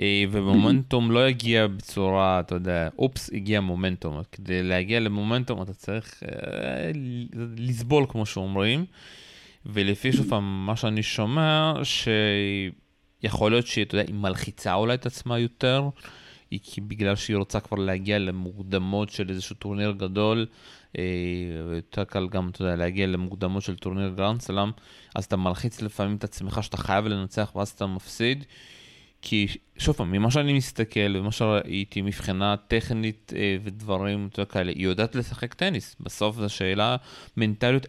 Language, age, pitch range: Hebrew, 30-49, 95-115 Hz